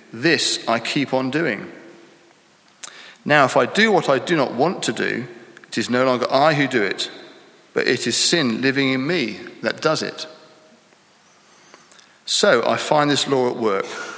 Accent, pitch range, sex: British, 120-150 Hz, male